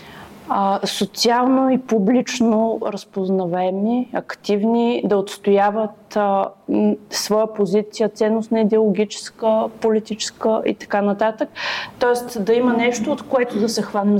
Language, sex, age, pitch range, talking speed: Bulgarian, female, 20-39, 210-240 Hz, 110 wpm